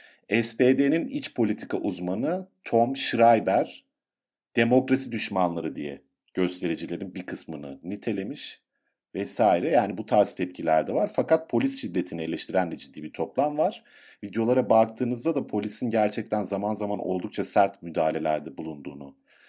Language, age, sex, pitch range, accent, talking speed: Turkish, 50-69, male, 90-130 Hz, native, 125 wpm